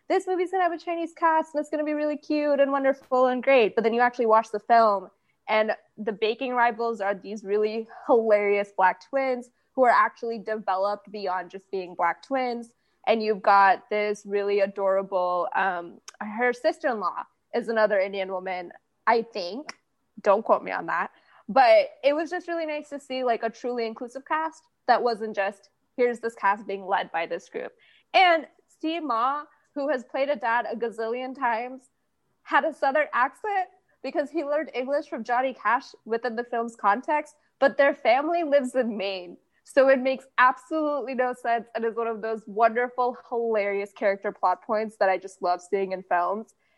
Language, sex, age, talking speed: English, female, 20-39, 185 wpm